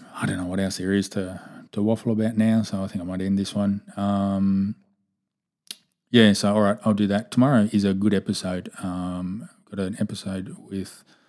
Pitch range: 95-105 Hz